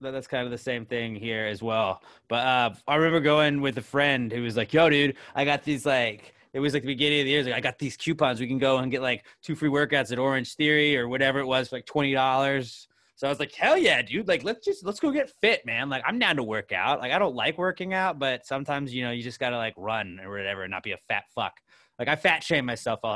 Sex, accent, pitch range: male, American, 135-180 Hz